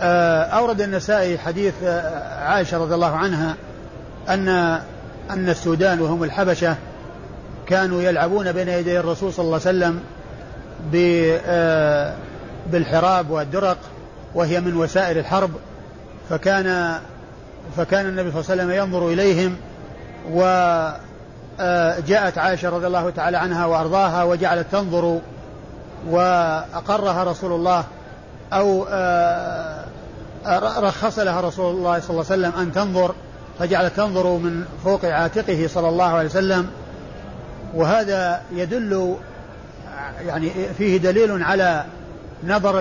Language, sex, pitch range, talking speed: Arabic, male, 170-190 Hz, 110 wpm